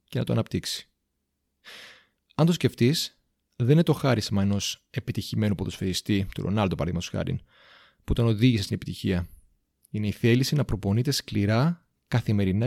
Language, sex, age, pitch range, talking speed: Greek, male, 30-49, 95-130 Hz, 145 wpm